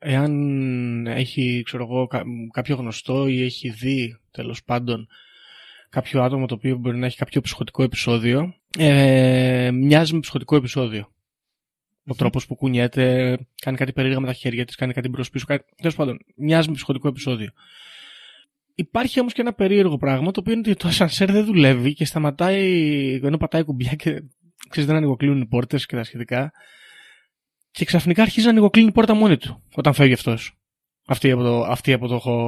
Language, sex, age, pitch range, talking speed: Greek, male, 20-39, 125-170 Hz, 170 wpm